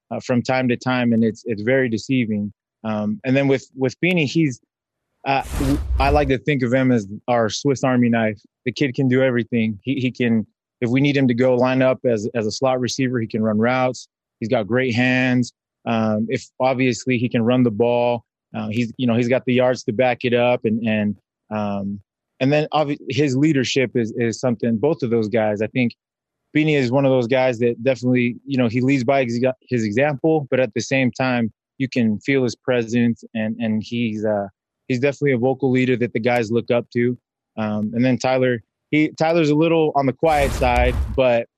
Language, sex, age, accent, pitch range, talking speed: English, male, 20-39, American, 115-130 Hz, 215 wpm